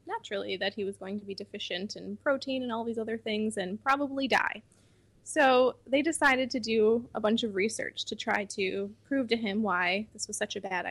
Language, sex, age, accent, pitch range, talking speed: English, female, 20-39, American, 200-235 Hz, 215 wpm